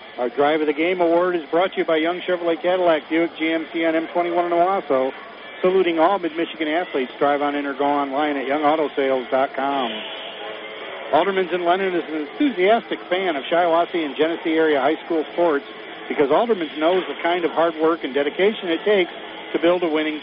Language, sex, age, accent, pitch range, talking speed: English, male, 50-69, American, 155-185 Hz, 185 wpm